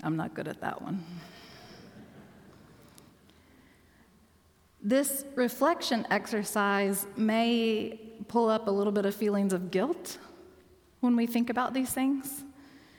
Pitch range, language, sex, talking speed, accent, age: 220-275 Hz, English, female, 115 wpm, American, 30-49